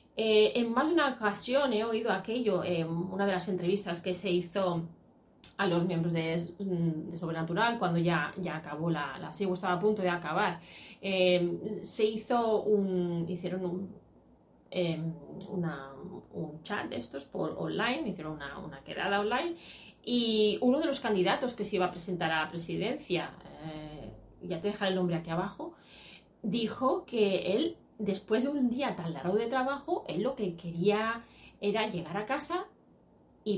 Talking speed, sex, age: 170 wpm, female, 30-49